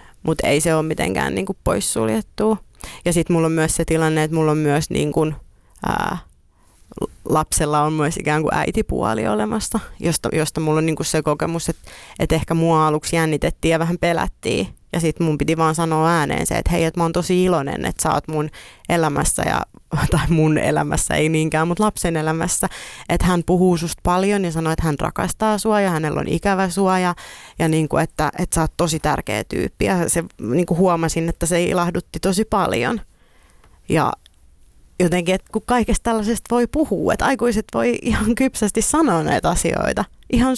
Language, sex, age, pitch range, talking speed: Finnish, female, 30-49, 160-220 Hz, 185 wpm